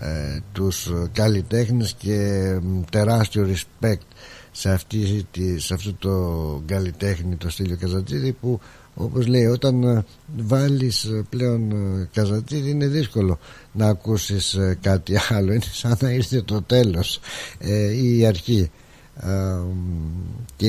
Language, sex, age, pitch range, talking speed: Greek, male, 60-79, 90-120 Hz, 105 wpm